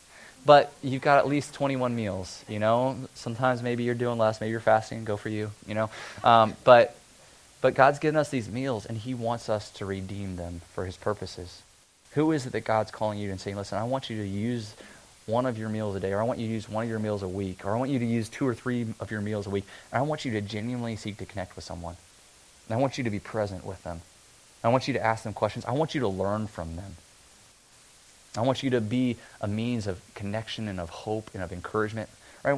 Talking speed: 255 wpm